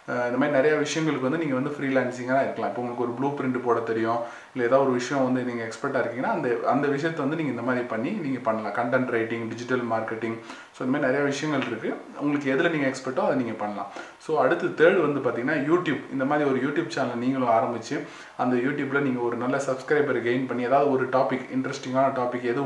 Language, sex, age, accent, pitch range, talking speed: Tamil, male, 20-39, native, 120-145 Hz, 215 wpm